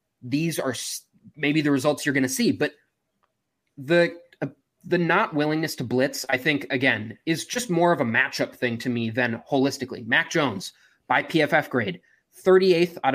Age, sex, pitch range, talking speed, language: 20-39, male, 130-185 Hz, 175 wpm, English